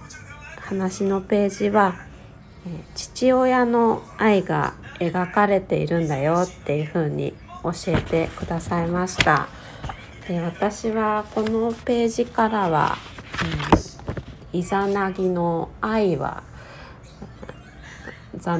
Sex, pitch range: female, 165-205 Hz